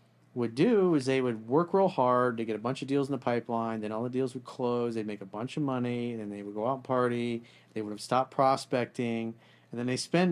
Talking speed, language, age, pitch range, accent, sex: 260 wpm, English, 40-59, 105-135 Hz, American, male